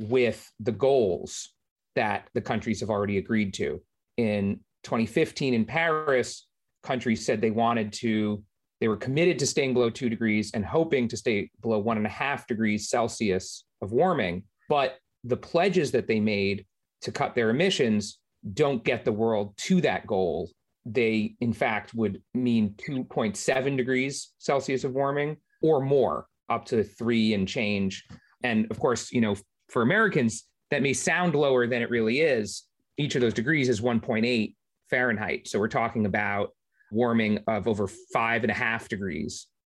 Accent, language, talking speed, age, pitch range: American, English, 165 wpm, 30-49, 110-135 Hz